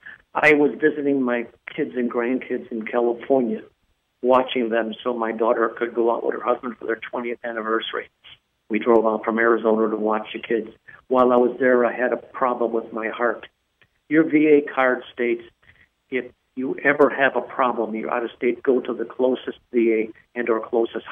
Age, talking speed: 50-69, 190 wpm